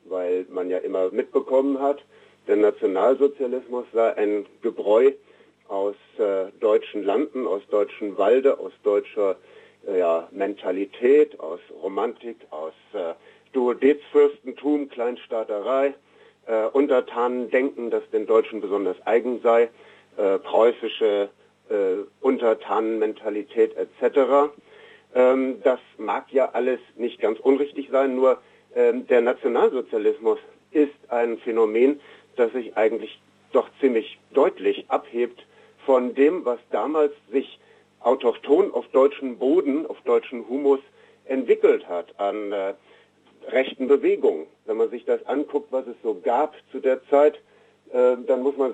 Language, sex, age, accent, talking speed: German, male, 50-69, German, 115 wpm